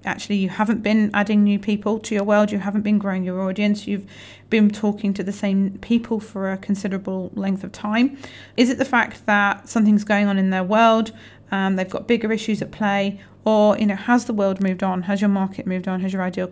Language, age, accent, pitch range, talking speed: English, 40-59, British, 185-215 Hz, 230 wpm